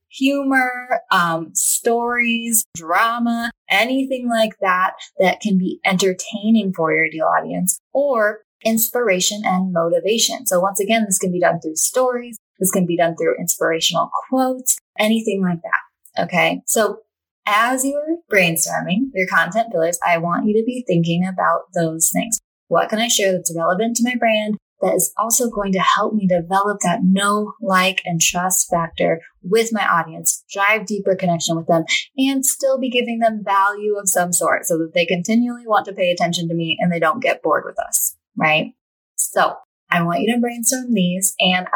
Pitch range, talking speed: 175-230 Hz, 175 wpm